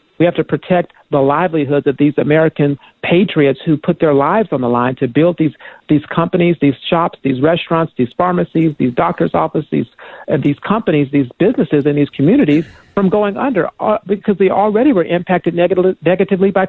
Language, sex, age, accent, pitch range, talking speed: English, male, 50-69, American, 150-185 Hz, 185 wpm